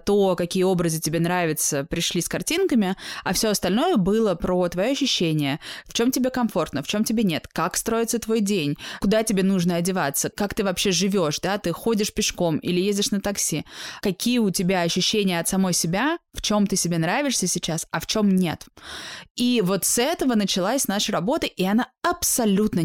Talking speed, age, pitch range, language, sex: 185 wpm, 20-39, 175-215 Hz, Russian, female